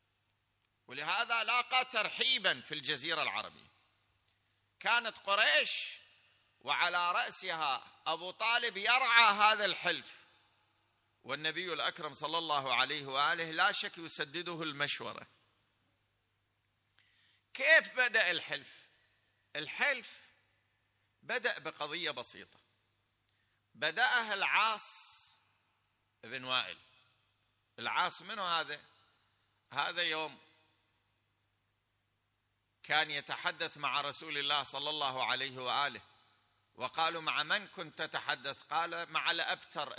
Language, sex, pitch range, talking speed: Arabic, male, 105-175 Hz, 85 wpm